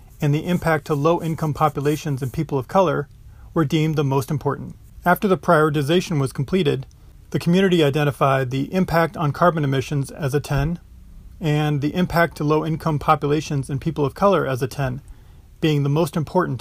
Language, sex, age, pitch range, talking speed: English, male, 40-59, 140-165 Hz, 180 wpm